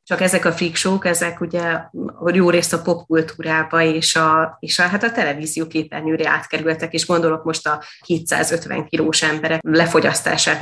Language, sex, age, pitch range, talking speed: Hungarian, female, 30-49, 160-175 Hz, 160 wpm